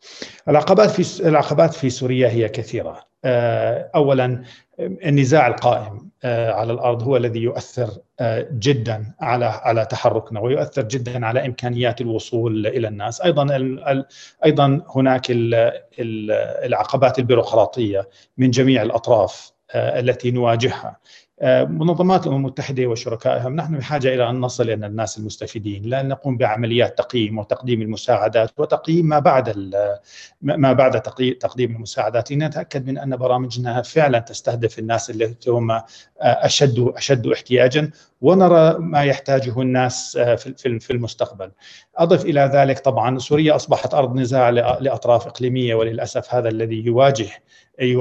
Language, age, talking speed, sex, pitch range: Arabic, 40-59, 115 wpm, male, 115-140 Hz